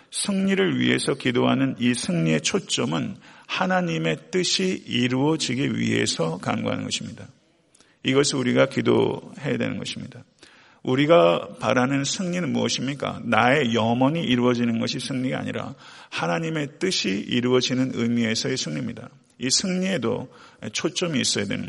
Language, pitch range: Korean, 120-145 Hz